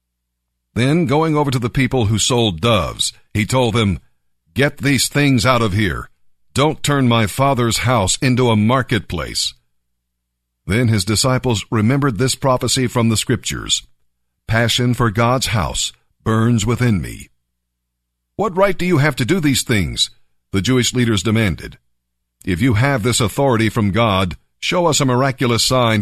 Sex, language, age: male, English, 50-69